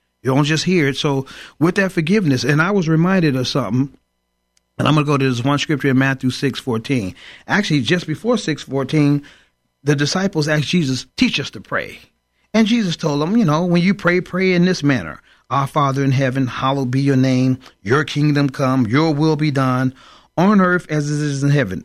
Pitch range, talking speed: 130-165 Hz, 210 wpm